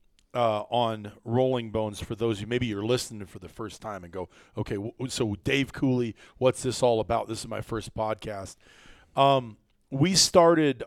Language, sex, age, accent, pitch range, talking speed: English, male, 40-59, American, 110-130 Hz, 190 wpm